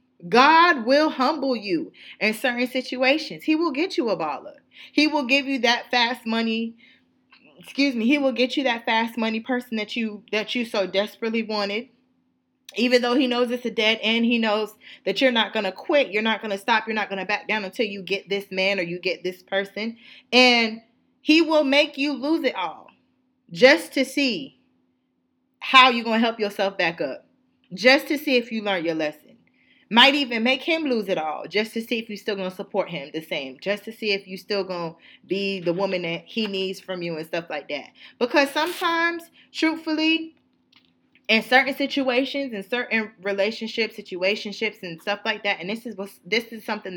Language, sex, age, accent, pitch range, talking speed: English, female, 20-39, American, 200-260 Hz, 200 wpm